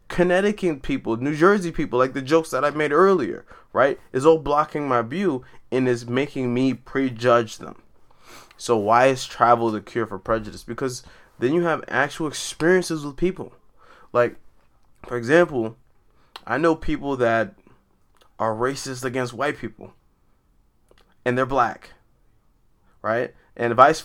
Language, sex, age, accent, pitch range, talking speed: English, male, 20-39, American, 115-155 Hz, 145 wpm